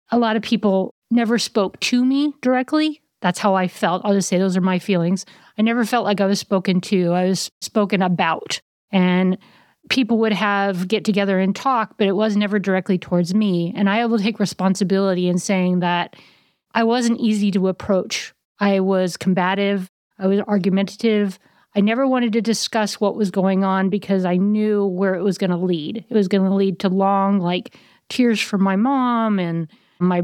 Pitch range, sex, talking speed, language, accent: 190-220 Hz, female, 195 wpm, English, American